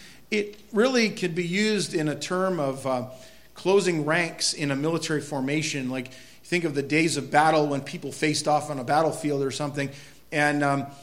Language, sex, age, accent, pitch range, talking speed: English, male, 40-59, American, 145-200 Hz, 185 wpm